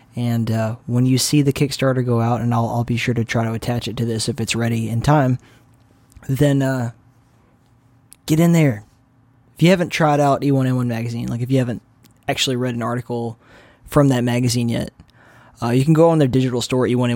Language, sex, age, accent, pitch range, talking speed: English, male, 20-39, American, 115-130 Hz, 205 wpm